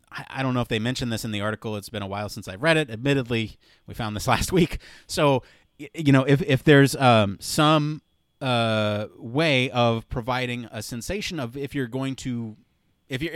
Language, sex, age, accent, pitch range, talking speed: English, male, 30-49, American, 105-130 Hz, 200 wpm